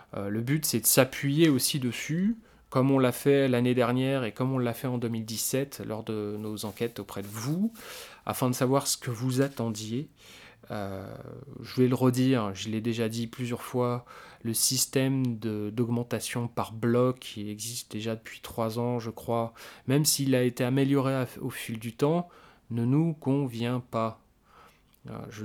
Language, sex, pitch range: French, male, 110-130 Hz